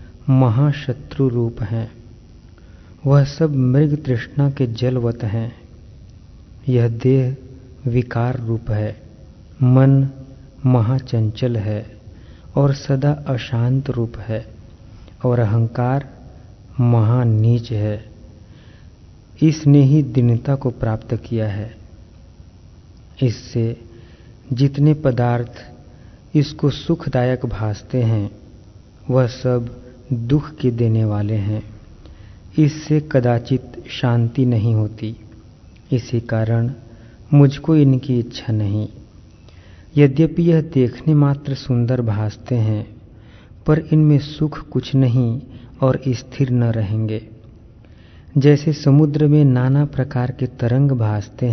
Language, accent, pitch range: Hindi, native, 110-130 Hz